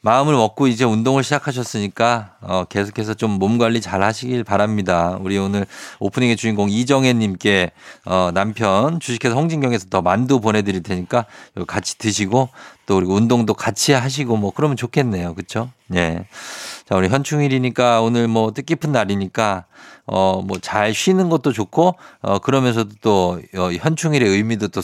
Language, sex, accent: Korean, male, native